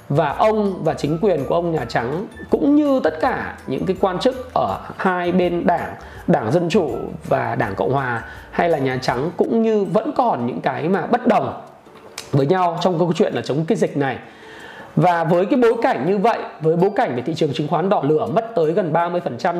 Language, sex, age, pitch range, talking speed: Vietnamese, male, 20-39, 165-225 Hz, 220 wpm